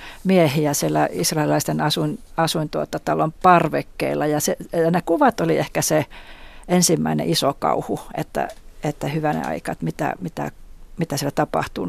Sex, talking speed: female, 135 wpm